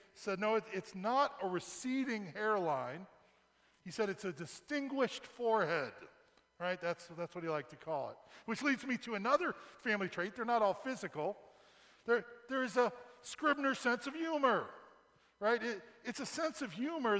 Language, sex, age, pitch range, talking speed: English, male, 40-59, 190-250 Hz, 170 wpm